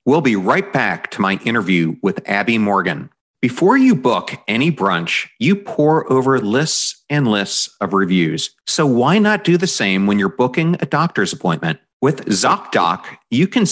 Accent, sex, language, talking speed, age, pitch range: American, male, English, 170 wpm, 40-59, 100-155 Hz